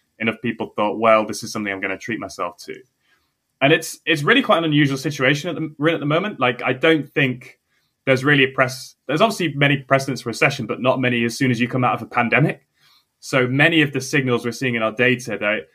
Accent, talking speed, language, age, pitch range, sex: British, 245 wpm, English, 10-29, 110-135 Hz, male